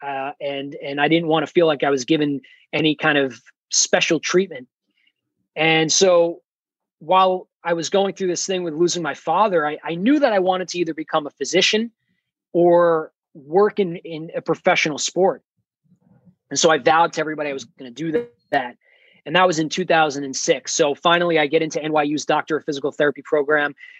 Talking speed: 190 wpm